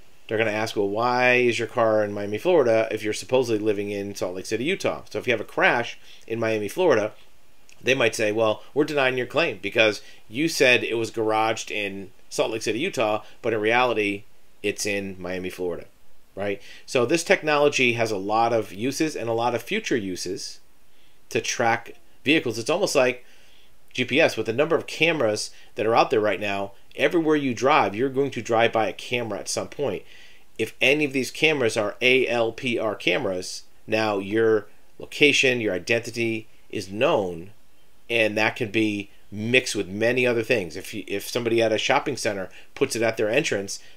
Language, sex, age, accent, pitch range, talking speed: English, male, 40-59, American, 105-125 Hz, 190 wpm